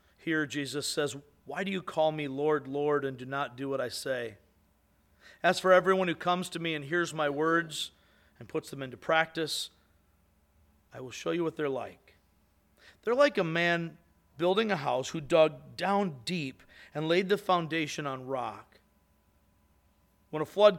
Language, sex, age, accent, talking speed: English, male, 40-59, American, 175 wpm